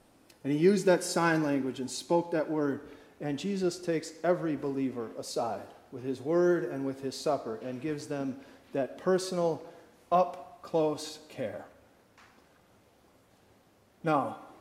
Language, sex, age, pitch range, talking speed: English, male, 40-59, 135-175 Hz, 125 wpm